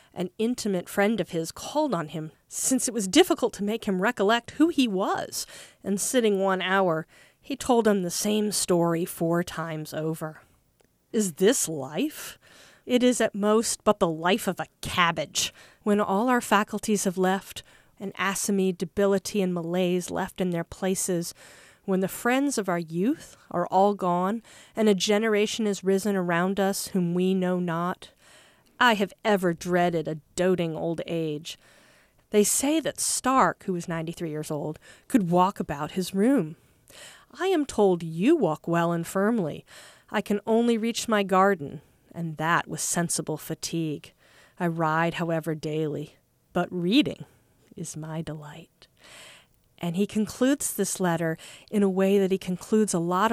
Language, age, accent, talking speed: English, 40-59, American, 160 wpm